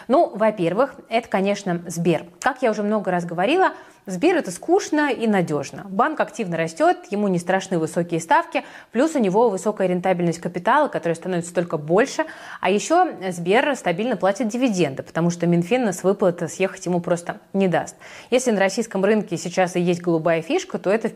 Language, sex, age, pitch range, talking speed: Russian, female, 20-39, 175-225 Hz, 180 wpm